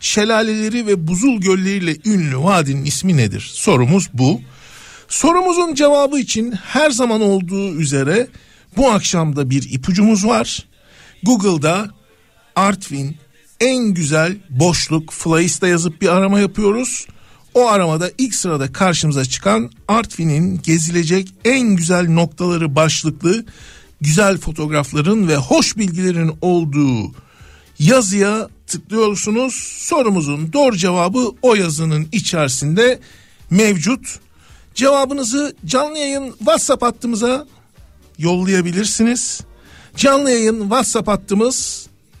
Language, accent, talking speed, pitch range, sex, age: Turkish, native, 100 wpm, 155-225 Hz, male, 60-79